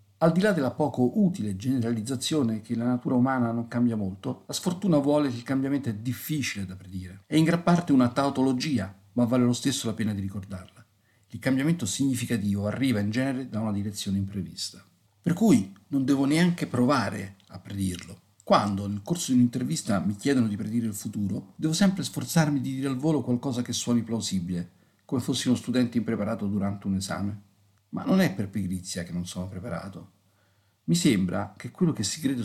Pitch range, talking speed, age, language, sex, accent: 100-140 Hz, 190 wpm, 50-69, Italian, male, native